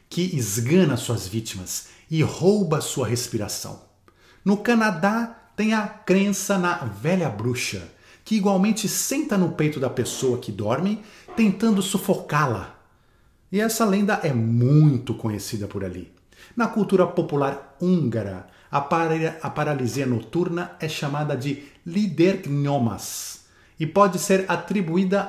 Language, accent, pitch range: Portuguese, Brazilian, 120-185 Hz